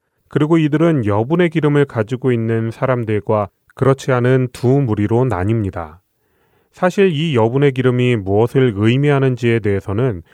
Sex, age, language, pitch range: male, 30-49, Korean, 105-140 Hz